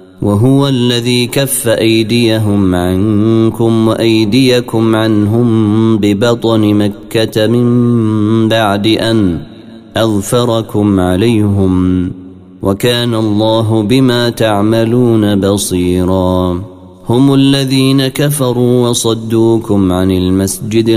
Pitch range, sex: 100-120 Hz, male